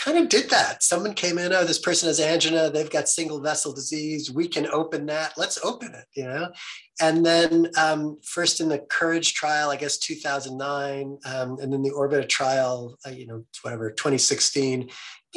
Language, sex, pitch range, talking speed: English, male, 130-180 Hz, 185 wpm